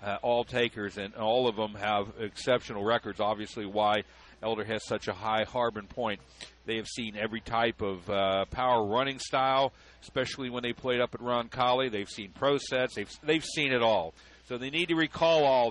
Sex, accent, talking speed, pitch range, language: male, American, 195 wpm, 115-135 Hz, English